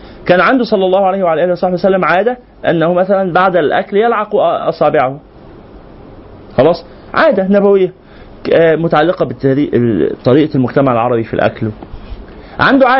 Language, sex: Arabic, male